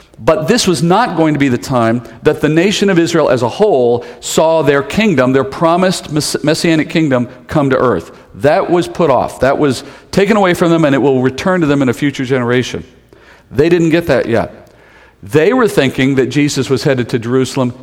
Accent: American